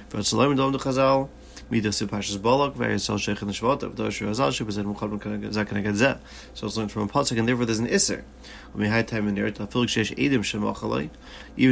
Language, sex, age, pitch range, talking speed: English, male, 30-49, 105-130 Hz, 55 wpm